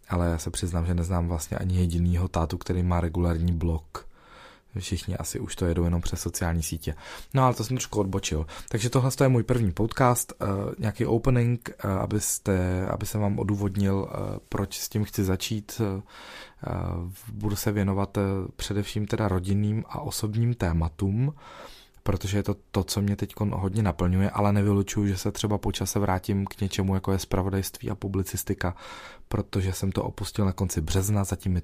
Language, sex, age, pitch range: Czech, male, 20-39, 90-105 Hz